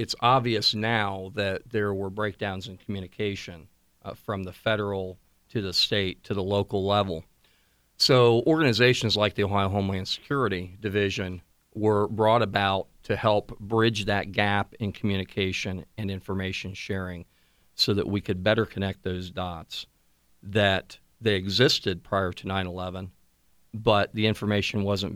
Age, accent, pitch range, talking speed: 50-69, American, 95-110 Hz, 140 wpm